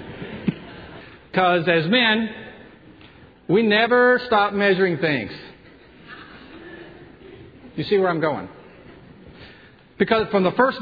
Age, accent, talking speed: 50-69, American, 95 wpm